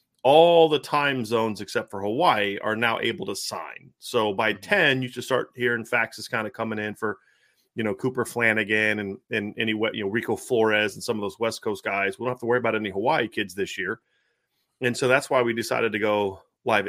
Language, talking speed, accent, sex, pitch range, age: English, 225 wpm, American, male, 105-120 Hz, 30-49